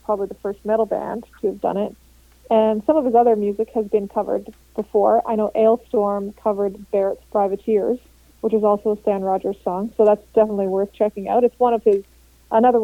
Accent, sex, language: American, female, English